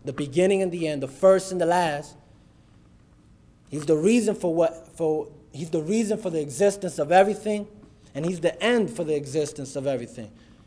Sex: male